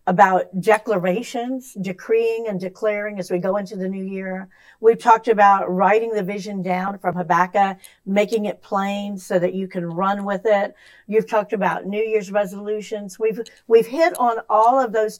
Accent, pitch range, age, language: American, 205-250 Hz, 50-69, English